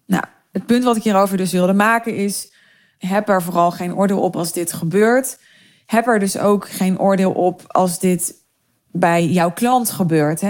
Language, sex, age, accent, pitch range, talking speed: Dutch, female, 20-39, Dutch, 190-250 Hz, 175 wpm